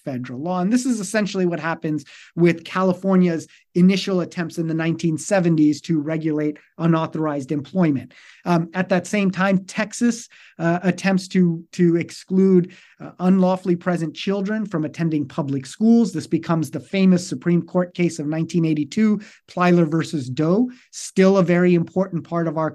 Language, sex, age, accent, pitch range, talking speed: English, male, 30-49, American, 155-190 Hz, 150 wpm